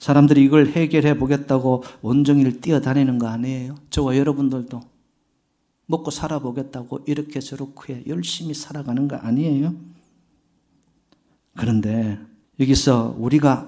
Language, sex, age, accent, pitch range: Korean, male, 50-69, native, 125-200 Hz